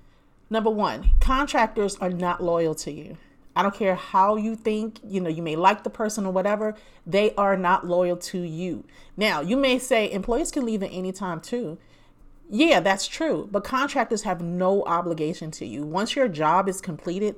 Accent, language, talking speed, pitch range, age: American, English, 190 wpm, 170-230 Hz, 40-59